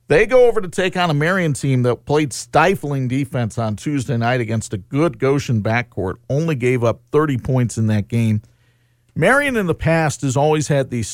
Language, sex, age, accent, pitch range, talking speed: English, male, 50-69, American, 115-155 Hz, 200 wpm